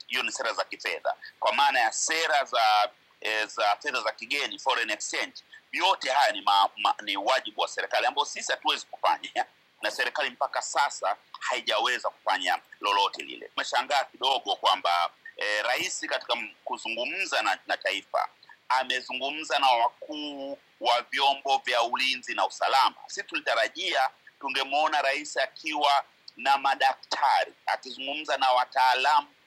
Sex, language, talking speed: male, Swahili, 130 wpm